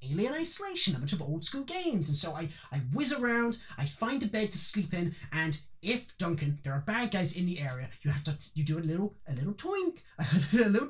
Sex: male